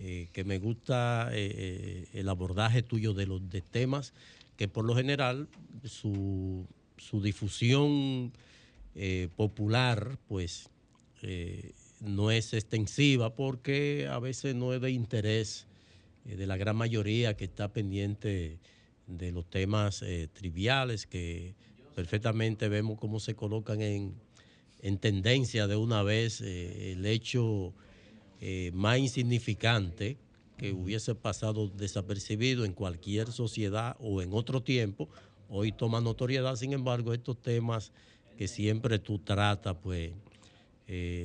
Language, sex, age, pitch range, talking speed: Spanish, male, 50-69, 100-120 Hz, 125 wpm